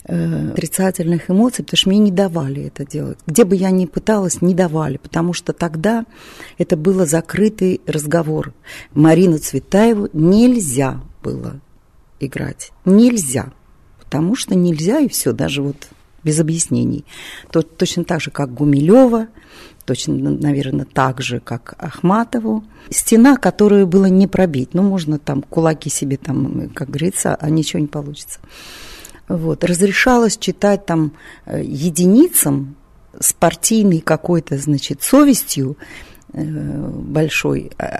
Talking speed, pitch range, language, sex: 125 wpm, 145-190 Hz, Russian, female